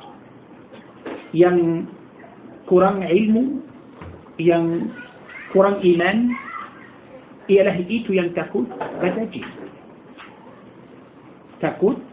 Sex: male